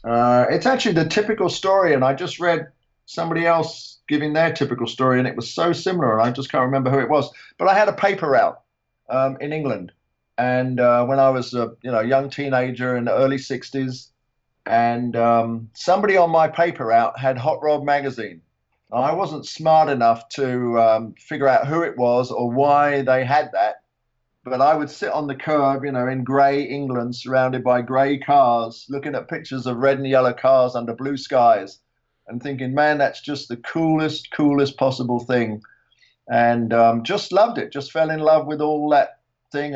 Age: 50-69